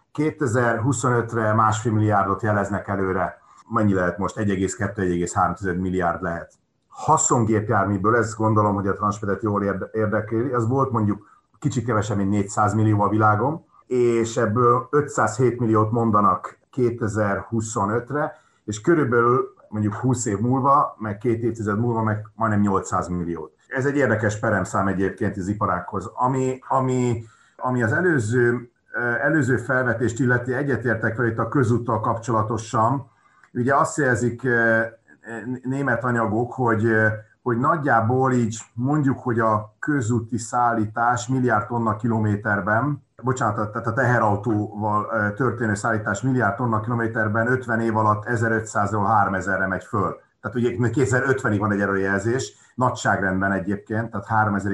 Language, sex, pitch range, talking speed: Hungarian, male, 105-125 Hz, 125 wpm